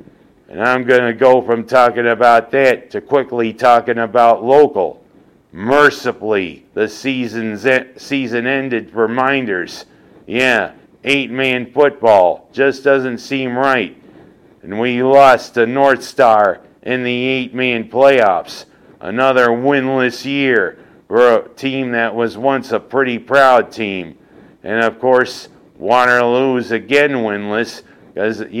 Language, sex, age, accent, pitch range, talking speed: English, male, 50-69, American, 115-135 Hz, 125 wpm